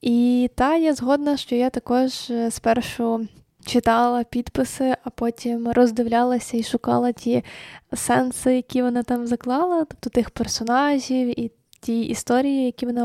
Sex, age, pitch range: female, 10-29, 235-250 Hz